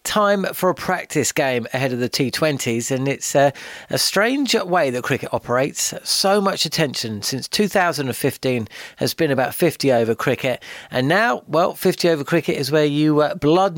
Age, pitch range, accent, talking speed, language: 40-59, 125-165 Hz, British, 175 wpm, English